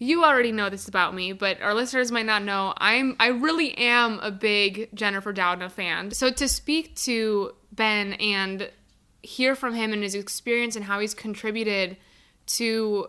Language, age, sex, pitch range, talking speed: English, 20-39, female, 200-250 Hz, 175 wpm